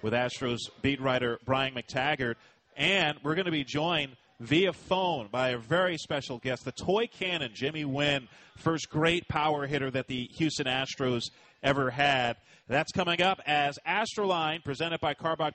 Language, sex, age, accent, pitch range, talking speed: English, male, 30-49, American, 125-165 Hz, 160 wpm